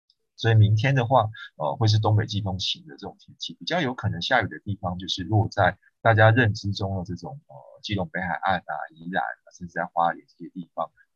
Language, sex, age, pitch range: Chinese, male, 20-39, 95-115 Hz